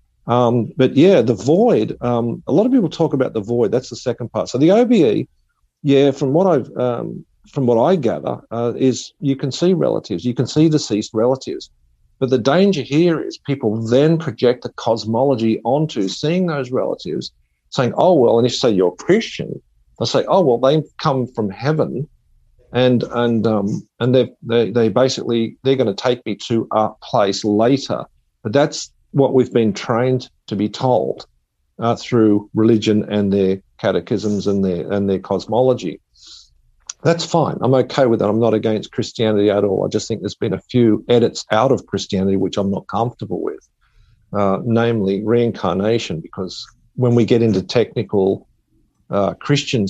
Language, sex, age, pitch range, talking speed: English, male, 50-69, 105-130 Hz, 180 wpm